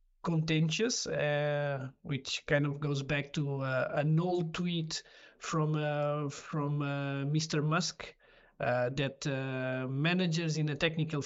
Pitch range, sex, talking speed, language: 145-185 Hz, male, 135 wpm, English